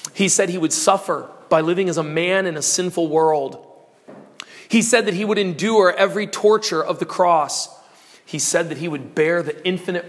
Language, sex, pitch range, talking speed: English, male, 180-225 Hz, 195 wpm